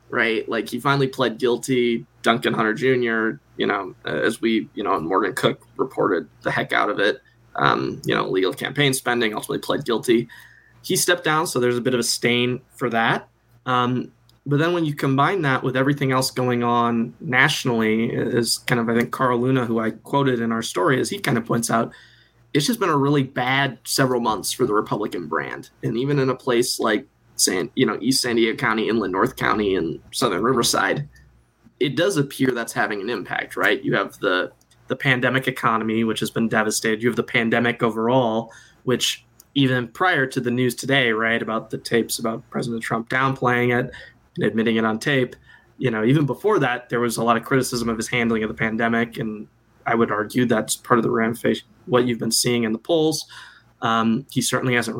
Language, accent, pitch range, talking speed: English, American, 115-130 Hz, 205 wpm